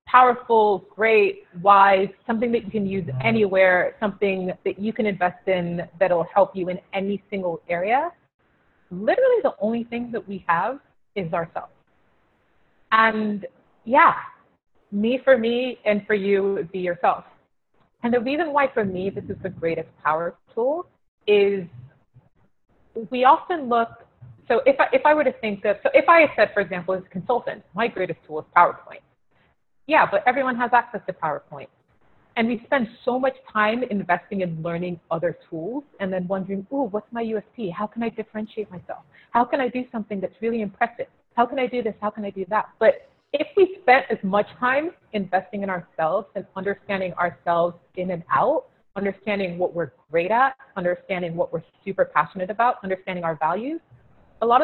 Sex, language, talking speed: female, English, 175 wpm